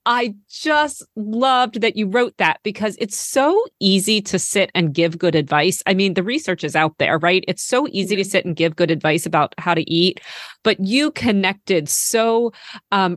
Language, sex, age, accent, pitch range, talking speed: English, female, 30-49, American, 170-225 Hz, 195 wpm